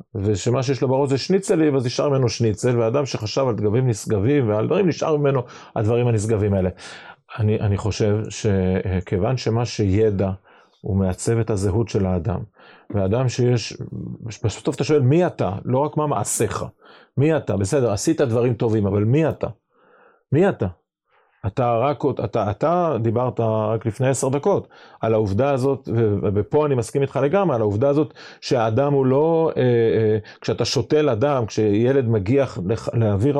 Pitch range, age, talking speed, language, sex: 105-140 Hz, 40-59, 155 wpm, Hebrew, male